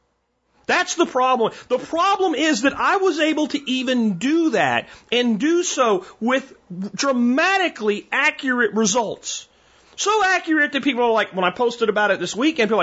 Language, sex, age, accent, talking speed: English, male, 40-59, American, 165 wpm